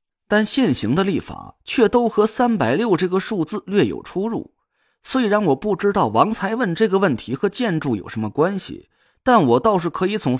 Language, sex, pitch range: Chinese, male, 160-215 Hz